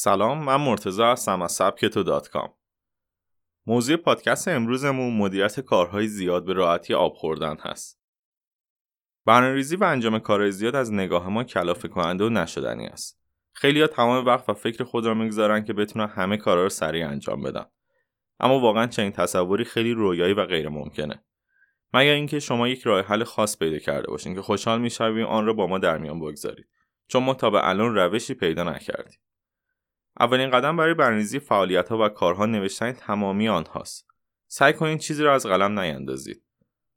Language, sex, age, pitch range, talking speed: Persian, male, 30-49, 95-120 Hz, 155 wpm